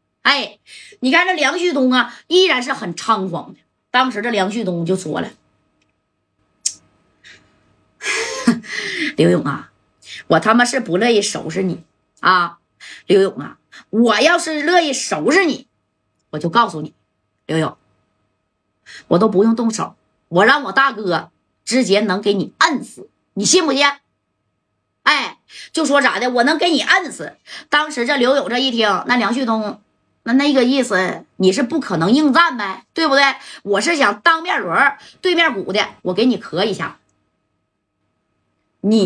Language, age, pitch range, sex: Chinese, 20-39, 195-295 Hz, female